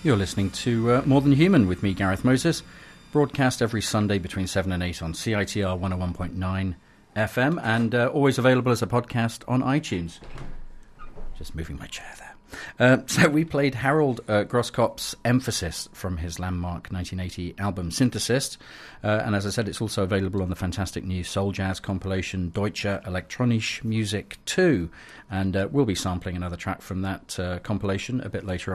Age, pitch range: 40-59, 95-120 Hz